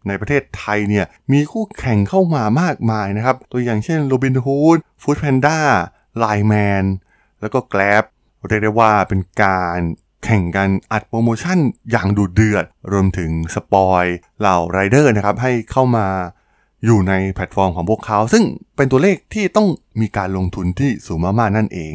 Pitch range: 95-130 Hz